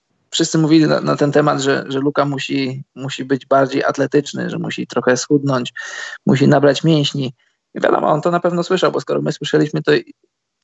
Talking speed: 185 wpm